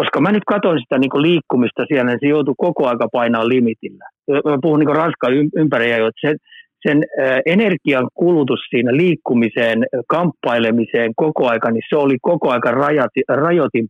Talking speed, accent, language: 150 wpm, native, Finnish